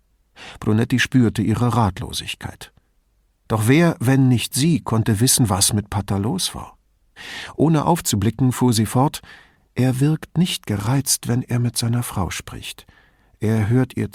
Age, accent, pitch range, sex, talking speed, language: 50-69, German, 100-140 Hz, male, 145 wpm, English